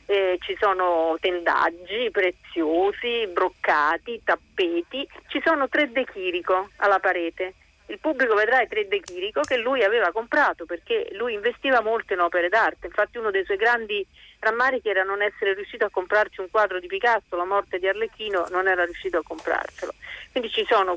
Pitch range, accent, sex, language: 180-290 Hz, native, female, Italian